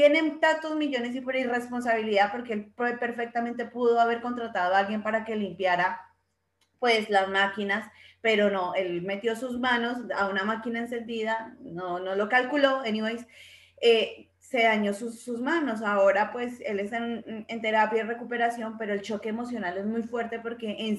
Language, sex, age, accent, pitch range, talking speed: Spanish, female, 20-39, Colombian, 205-245 Hz, 170 wpm